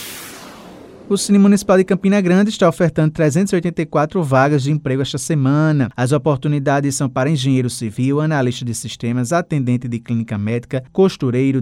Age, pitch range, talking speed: 20-39, 130-160 Hz, 145 wpm